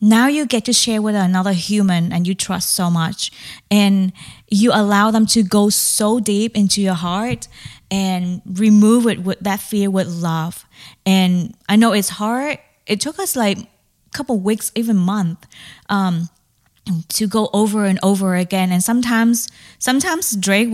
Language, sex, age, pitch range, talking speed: English, female, 20-39, 185-220 Hz, 170 wpm